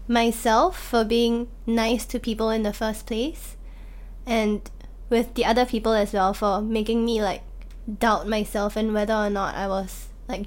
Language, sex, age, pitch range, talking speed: English, female, 20-39, 210-245 Hz, 170 wpm